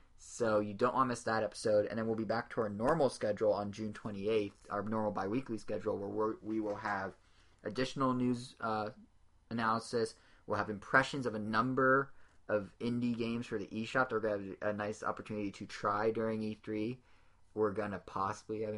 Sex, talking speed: male, 195 wpm